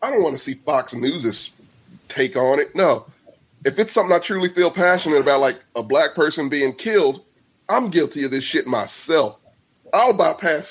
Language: English